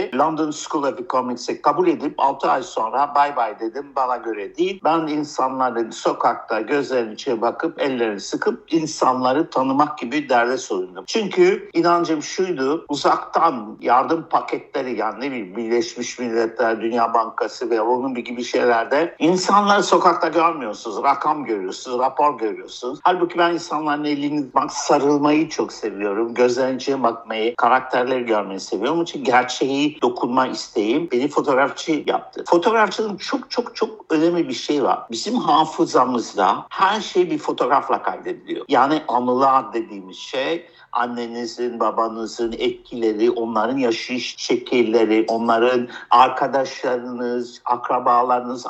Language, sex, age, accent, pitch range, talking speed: Turkish, male, 60-79, native, 120-180 Hz, 125 wpm